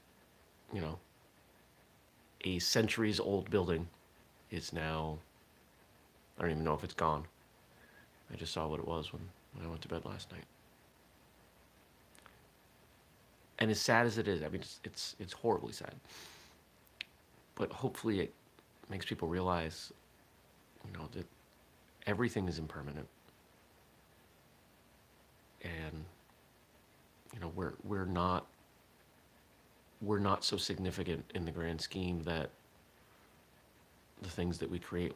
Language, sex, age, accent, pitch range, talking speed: English, male, 30-49, American, 80-100 Hz, 125 wpm